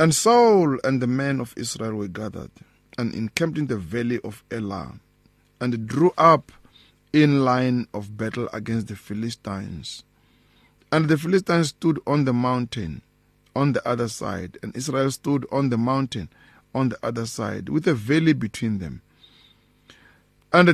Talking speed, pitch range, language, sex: 155 wpm, 115-150 Hz, English, male